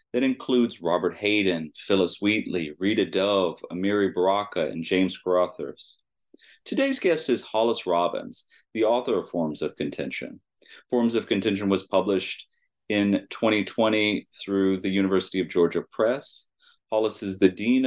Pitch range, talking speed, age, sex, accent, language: 90-110 Hz, 140 wpm, 30-49, male, American, English